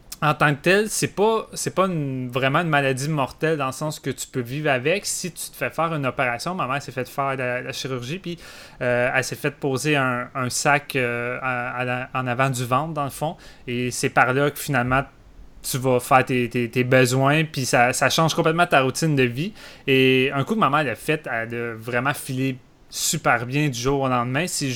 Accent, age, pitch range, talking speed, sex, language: Canadian, 20-39, 125-145 Hz, 230 wpm, male, French